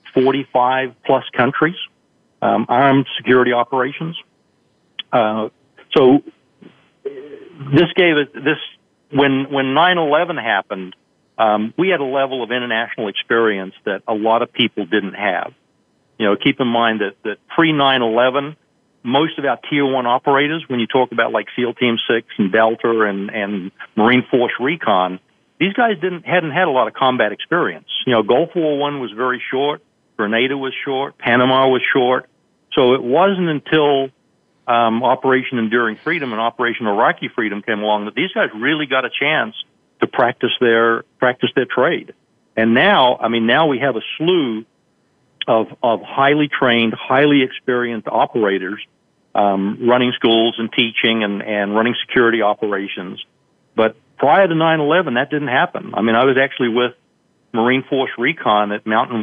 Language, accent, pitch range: English, American, 115-140 Hz